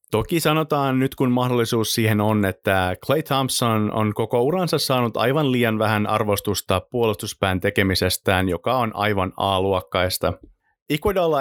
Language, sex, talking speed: Finnish, male, 130 wpm